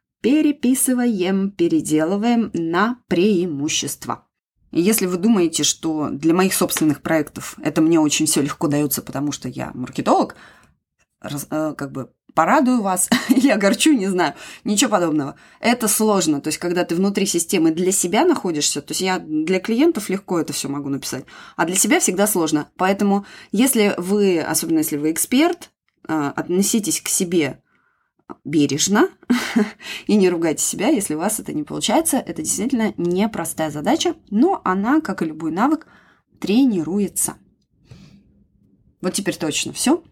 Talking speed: 140 wpm